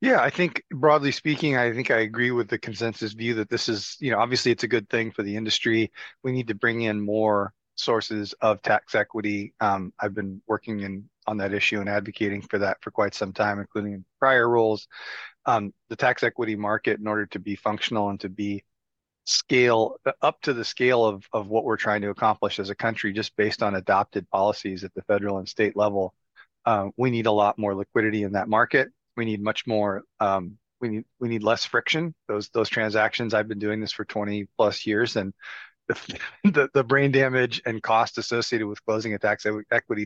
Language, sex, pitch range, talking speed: English, male, 100-115 Hz, 210 wpm